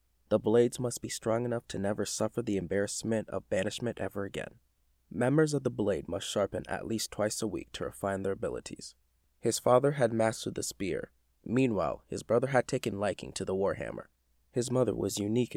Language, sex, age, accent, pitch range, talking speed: English, male, 20-39, American, 95-120 Hz, 190 wpm